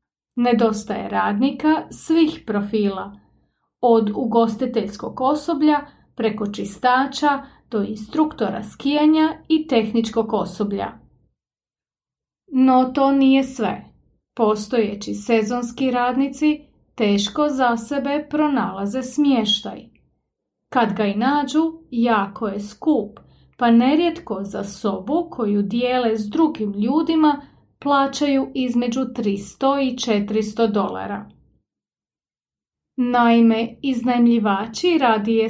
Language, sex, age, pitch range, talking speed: English, female, 30-49, 215-275 Hz, 90 wpm